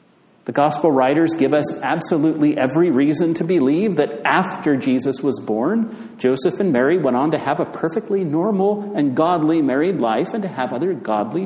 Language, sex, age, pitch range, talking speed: English, male, 50-69, 155-210 Hz, 180 wpm